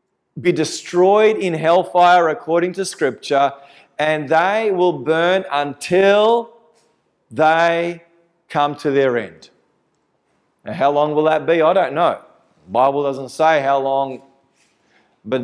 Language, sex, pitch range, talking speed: English, male, 125-170 Hz, 130 wpm